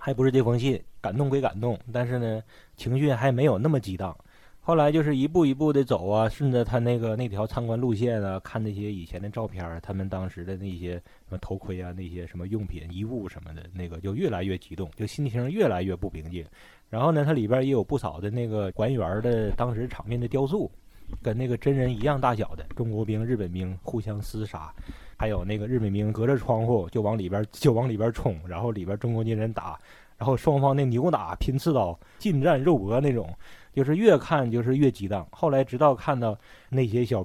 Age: 20-39